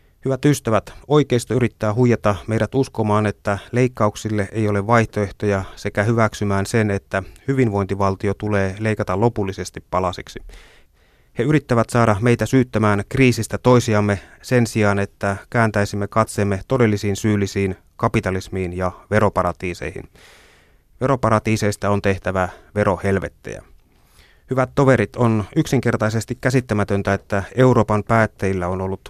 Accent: native